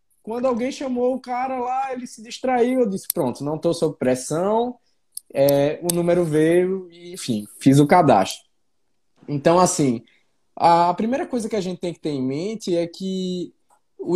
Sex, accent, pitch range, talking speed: male, Brazilian, 165-235 Hz, 175 wpm